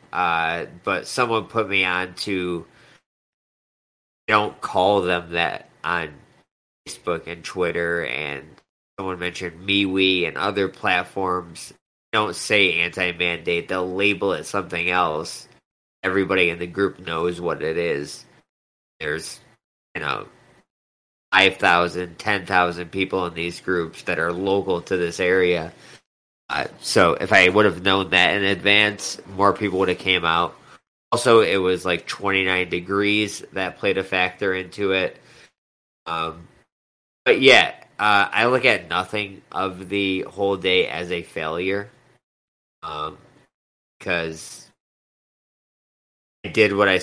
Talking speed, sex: 130 wpm, male